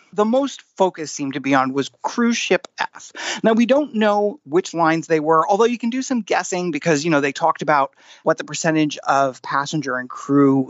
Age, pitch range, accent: 30-49, 145-205 Hz, American